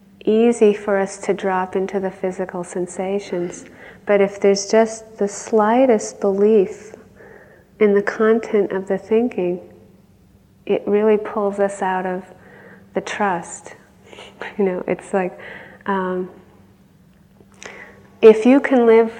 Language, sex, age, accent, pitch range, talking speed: English, female, 30-49, American, 185-210 Hz, 120 wpm